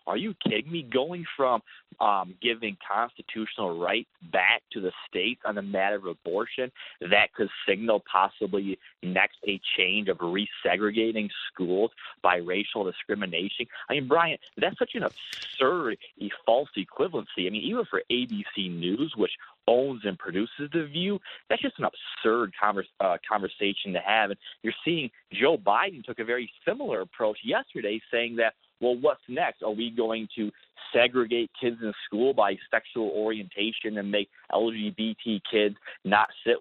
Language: English